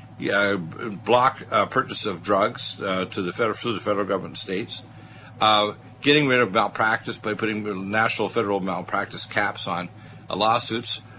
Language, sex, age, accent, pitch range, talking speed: English, male, 60-79, American, 105-125 Hz, 155 wpm